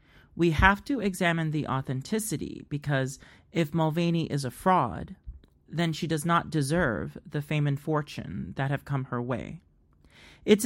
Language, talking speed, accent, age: English, 150 wpm, American, 40-59